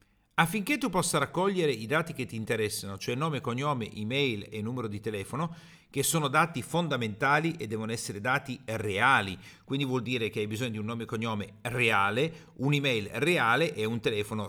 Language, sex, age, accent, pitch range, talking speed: Italian, male, 40-59, native, 110-155 Hz, 180 wpm